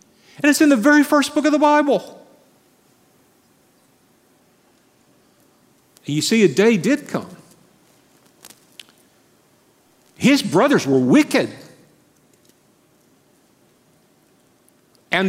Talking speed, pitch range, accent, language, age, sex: 85 wpm, 130-195 Hz, American, English, 50-69, male